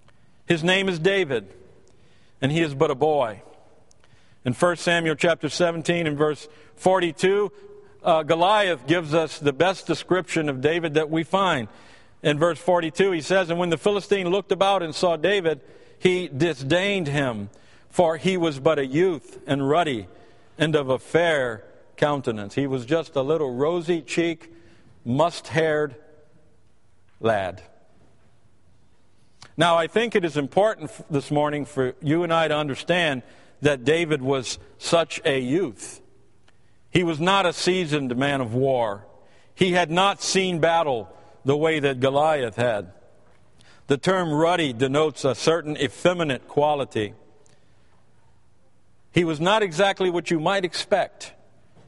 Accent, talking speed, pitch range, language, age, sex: American, 140 wpm, 135-175 Hz, English, 50-69, male